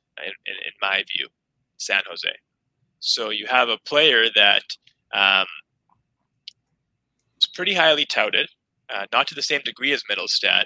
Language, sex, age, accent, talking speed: English, male, 20-39, American, 145 wpm